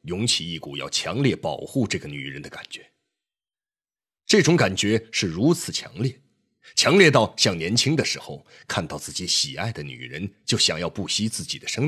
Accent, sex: native, male